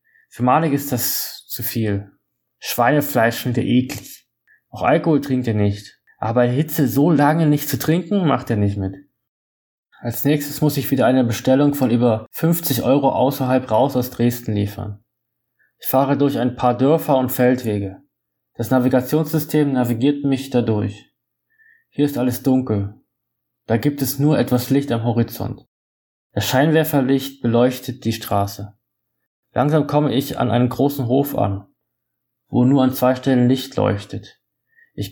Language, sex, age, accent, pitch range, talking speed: German, male, 20-39, German, 110-145 Hz, 150 wpm